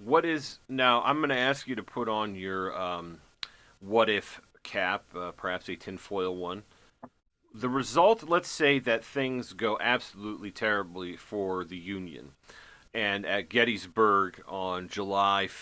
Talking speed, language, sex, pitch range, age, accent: 140 wpm, English, male, 100-120 Hz, 40-59, American